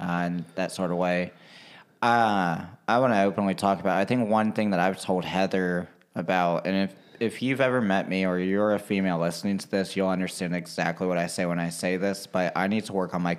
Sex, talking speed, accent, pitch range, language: male, 240 wpm, American, 85-100 Hz, English